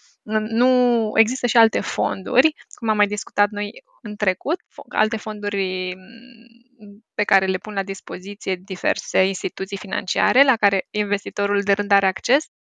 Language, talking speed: Romanian, 140 wpm